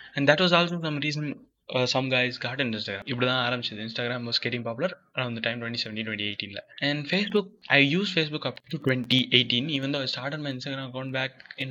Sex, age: male, 10-29